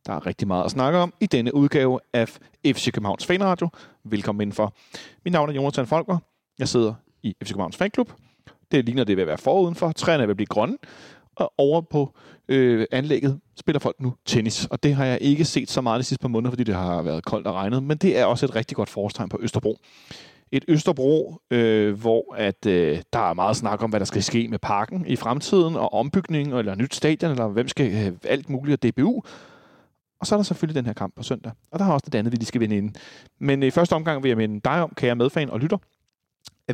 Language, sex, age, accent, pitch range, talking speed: Danish, male, 30-49, native, 115-155 Hz, 235 wpm